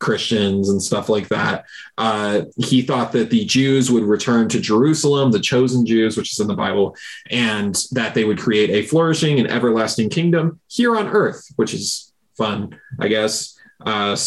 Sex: male